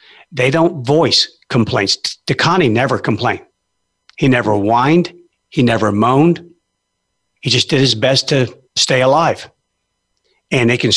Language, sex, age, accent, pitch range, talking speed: English, male, 50-69, American, 115-145 Hz, 140 wpm